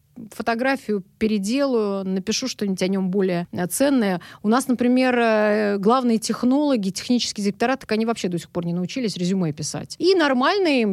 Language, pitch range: Russian, 200-255 Hz